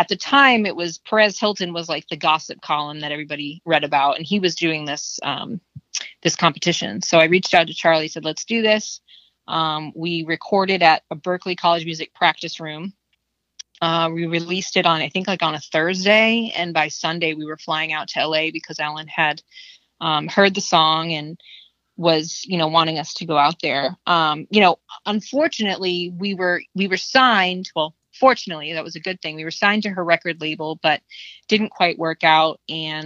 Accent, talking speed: American, 200 wpm